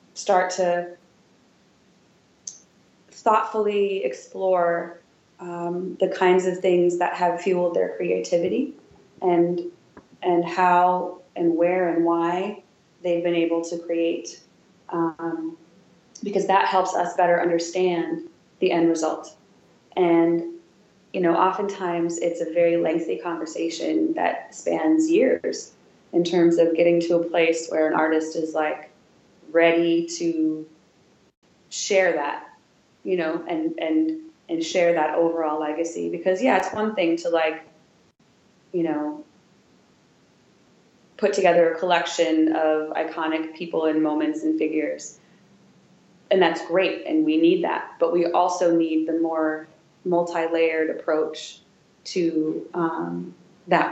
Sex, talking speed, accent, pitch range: female, 125 wpm, American, 165-185 Hz